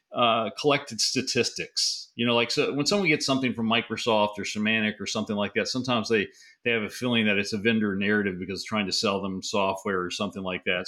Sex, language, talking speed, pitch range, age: male, English, 225 wpm, 105-130 Hz, 40-59